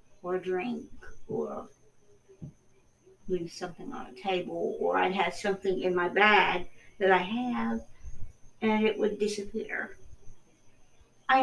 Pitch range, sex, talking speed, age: 185-215 Hz, female, 125 wpm, 50-69